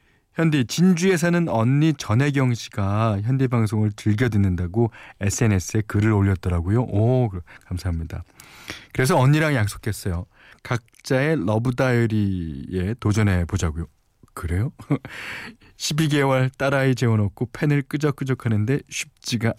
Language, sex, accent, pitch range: Korean, male, native, 100-145 Hz